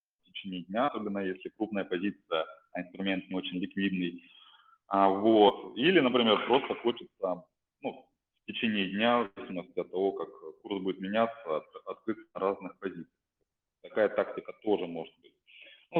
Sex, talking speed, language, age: male, 135 wpm, Russian, 20-39